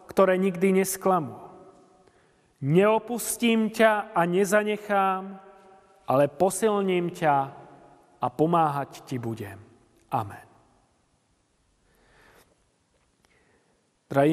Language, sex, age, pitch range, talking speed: Slovak, male, 40-59, 165-195 Hz, 65 wpm